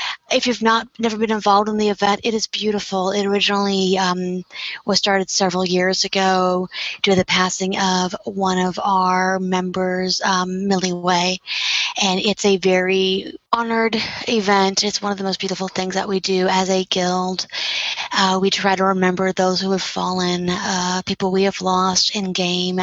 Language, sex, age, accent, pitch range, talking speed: English, female, 30-49, American, 185-210 Hz, 175 wpm